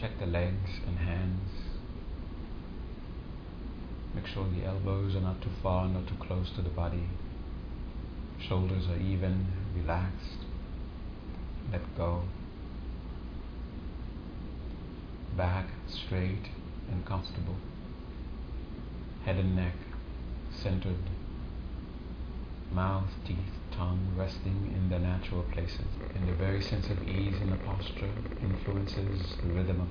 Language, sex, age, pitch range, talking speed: English, male, 60-79, 70-95 Hz, 110 wpm